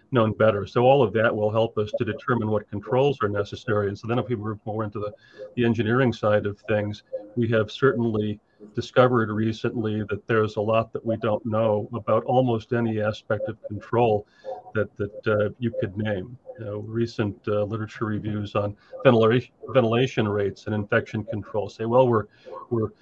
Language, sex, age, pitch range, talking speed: English, male, 40-59, 105-115 Hz, 185 wpm